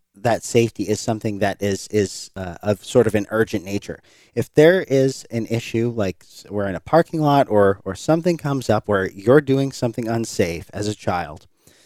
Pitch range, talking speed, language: 100-120 Hz, 190 wpm, English